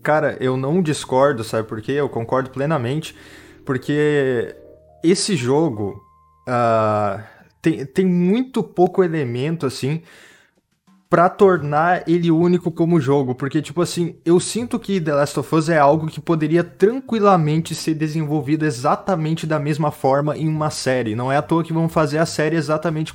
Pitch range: 130-175 Hz